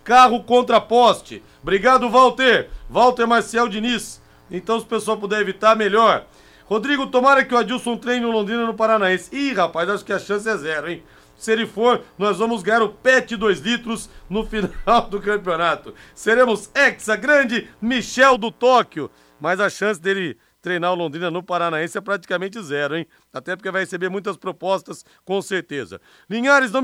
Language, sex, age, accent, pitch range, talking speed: Portuguese, male, 40-59, Brazilian, 200-235 Hz, 170 wpm